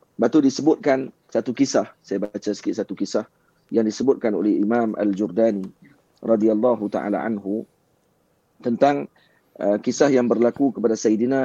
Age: 40-59